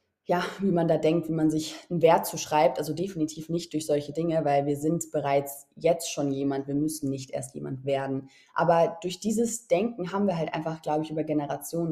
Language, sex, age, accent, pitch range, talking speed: German, female, 20-39, German, 155-200 Hz, 210 wpm